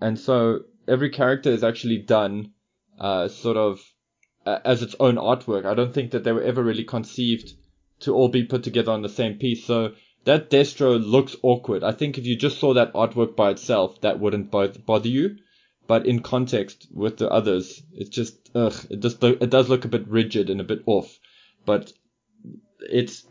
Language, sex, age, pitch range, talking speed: English, male, 20-39, 110-125 Hz, 195 wpm